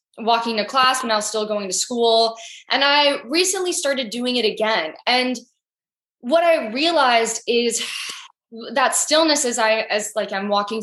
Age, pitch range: 10-29, 210-255 Hz